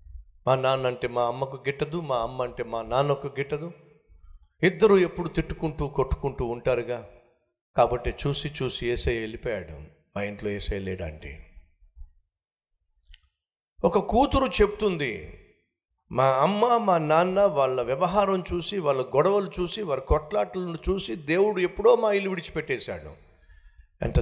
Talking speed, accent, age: 120 wpm, native, 50-69